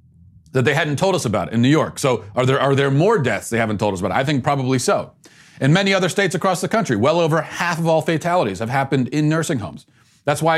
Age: 40-59